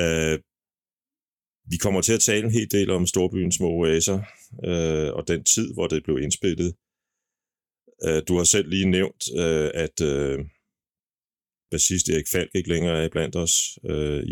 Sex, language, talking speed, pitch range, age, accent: male, Danish, 165 wpm, 80-90 Hz, 30-49, native